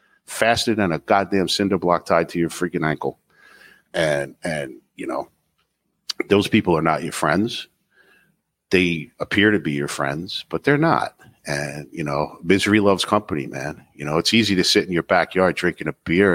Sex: male